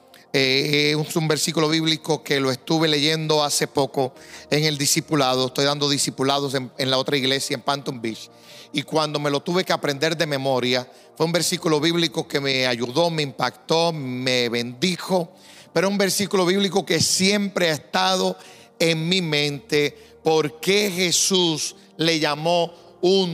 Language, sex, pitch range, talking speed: Spanish, male, 140-175 Hz, 160 wpm